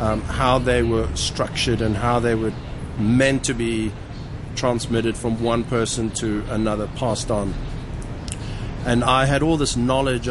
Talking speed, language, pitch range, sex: 150 wpm, English, 110-130 Hz, male